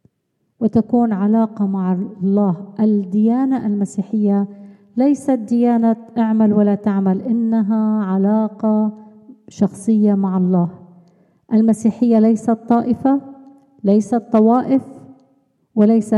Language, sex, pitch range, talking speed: Arabic, female, 200-230 Hz, 80 wpm